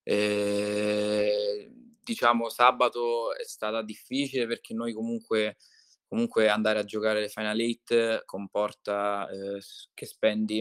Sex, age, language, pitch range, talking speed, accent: male, 20-39, Italian, 105-115 Hz, 115 wpm, native